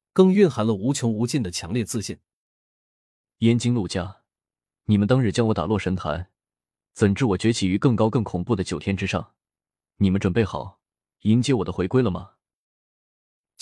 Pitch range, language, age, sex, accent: 100-145 Hz, Chinese, 20-39, male, native